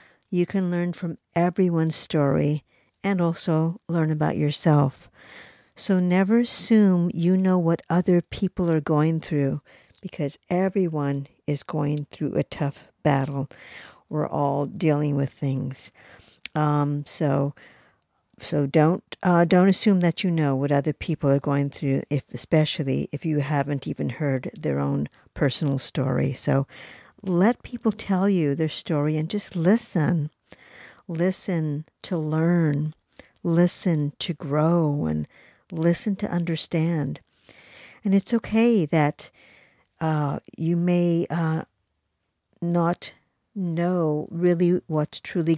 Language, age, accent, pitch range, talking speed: English, 50-69, American, 145-180 Hz, 125 wpm